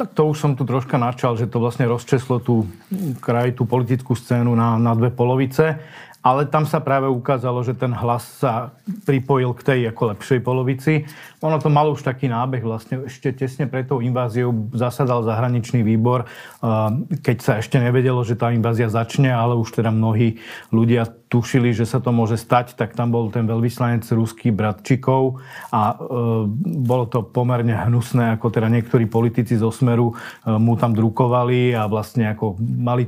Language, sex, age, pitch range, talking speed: Slovak, male, 40-59, 115-135 Hz, 170 wpm